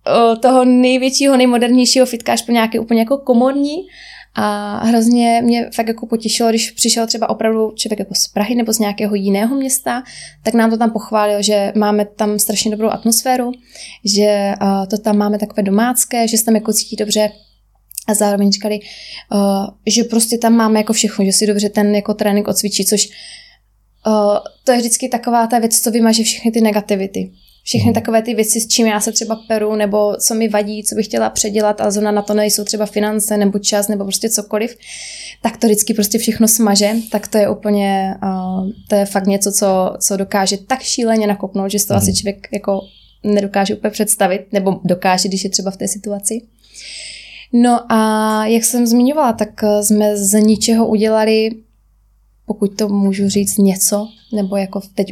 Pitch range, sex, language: 205-230 Hz, female, Czech